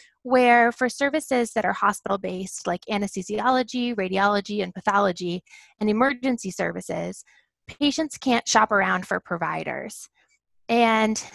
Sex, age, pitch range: female, 20-39, 195-245 Hz